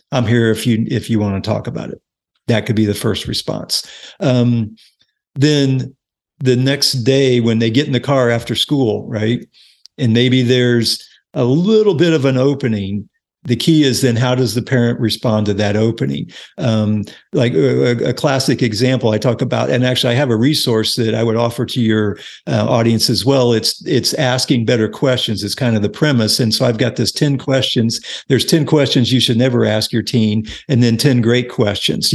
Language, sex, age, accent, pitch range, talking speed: English, male, 50-69, American, 115-135 Hz, 200 wpm